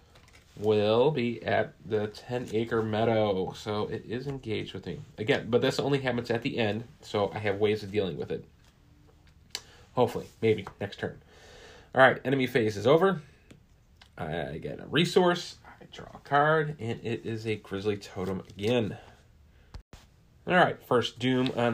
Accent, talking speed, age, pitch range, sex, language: American, 155 wpm, 30-49, 100-125 Hz, male, English